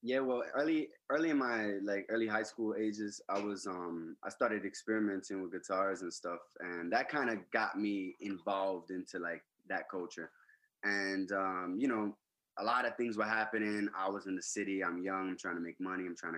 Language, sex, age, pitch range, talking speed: English, male, 20-39, 95-120 Hz, 205 wpm